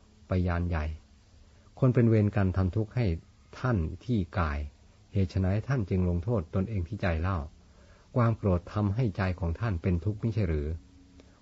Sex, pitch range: male, 90-105 Hz